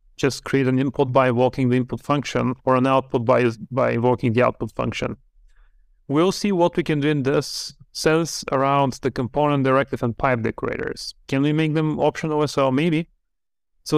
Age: 30-49